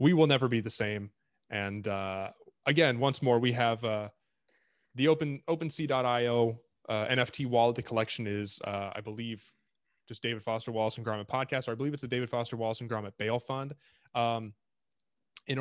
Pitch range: 110-125 Hz